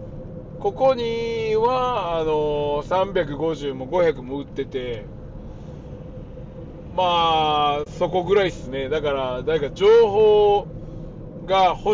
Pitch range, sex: 130-185 Hz, male